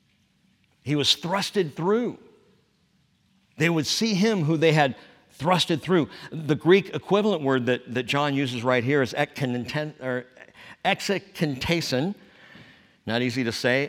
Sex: male